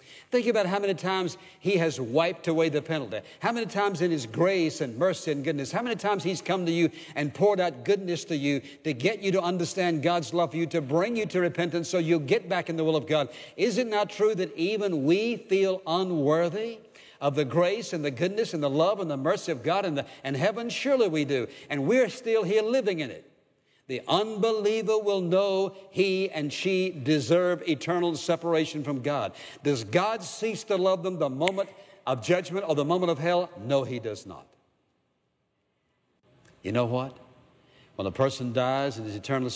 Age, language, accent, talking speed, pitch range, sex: 60-79, English, American, 205 wpm, 135-190 Hz, male